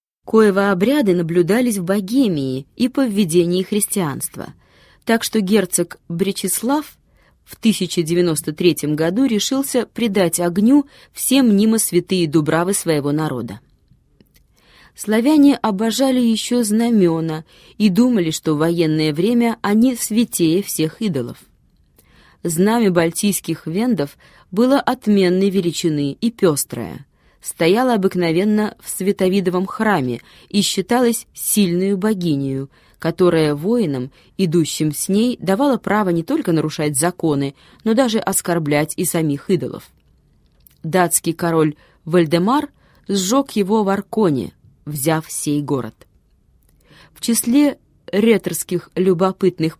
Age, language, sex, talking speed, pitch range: 20-39, Russian, female, 105 wpm, 165-220 Hz